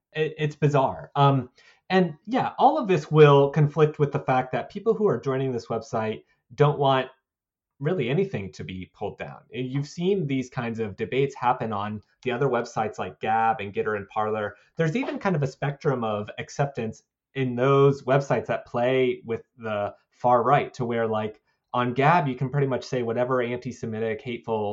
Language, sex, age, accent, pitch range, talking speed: English, male, 30-49, American, 115-145 Hz, 180 wpm